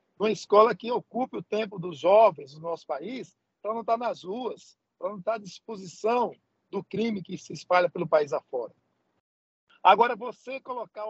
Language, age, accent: Portuguese, 60-79, Brazilian